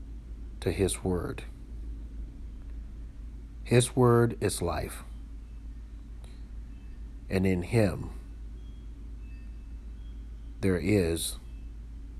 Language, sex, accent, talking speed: English, male, American, 60 wpm